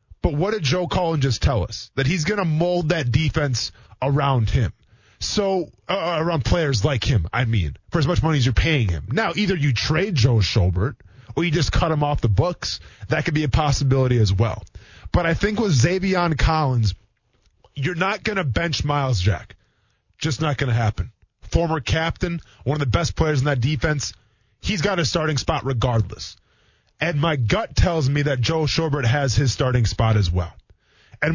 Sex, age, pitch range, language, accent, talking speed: male, 20-39, 115-175 Hz, English, American, 195 wpm